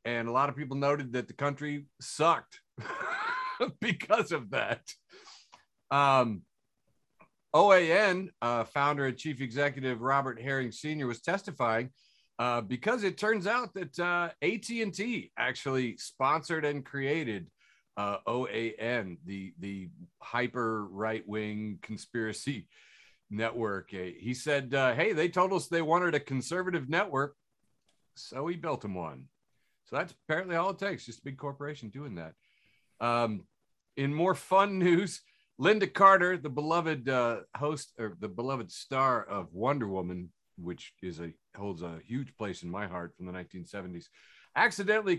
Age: 40-59